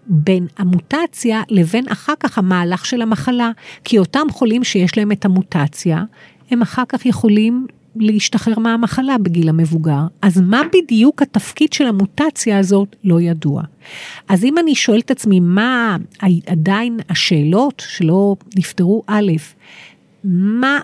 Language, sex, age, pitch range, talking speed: Hebrew, female, 50-69, 180-230 Hz, 130 wpm